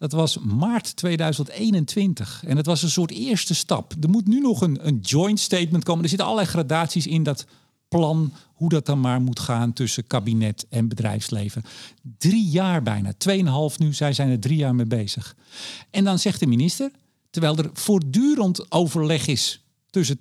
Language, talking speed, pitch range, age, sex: Dutch, 180 wpm, 130-190 Hz, 50-69, male